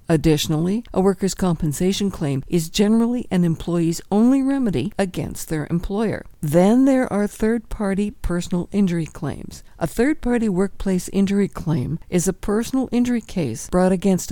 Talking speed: 140 wpm